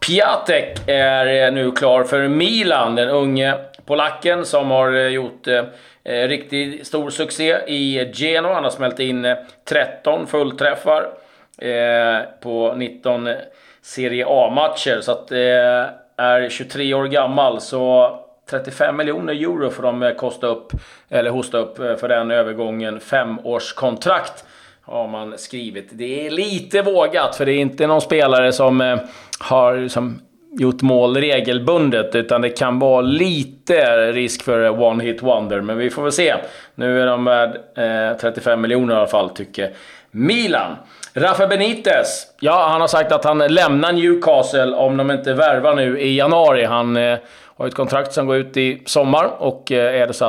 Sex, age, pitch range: male, 30-49, 120-140 Hz